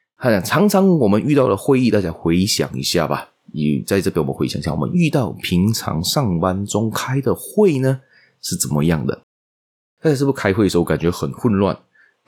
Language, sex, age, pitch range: Chinese, male, 20-39, 80-110 Hz